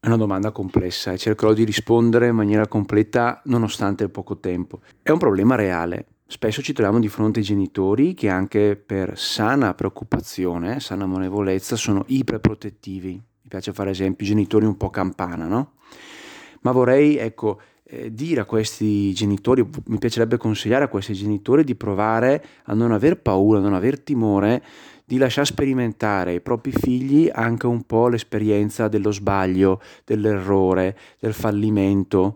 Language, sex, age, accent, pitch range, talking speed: Italian, male, 30-49, native, 100-120 Hz, 155 wpm